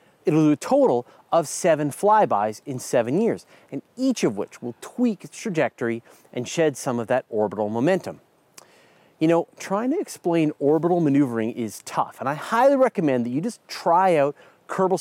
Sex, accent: male, American